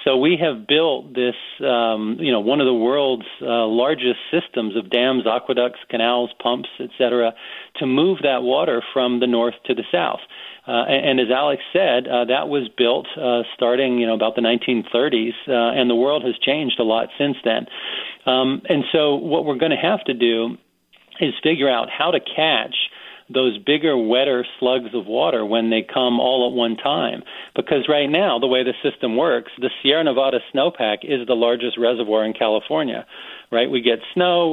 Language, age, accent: English, 40-59, American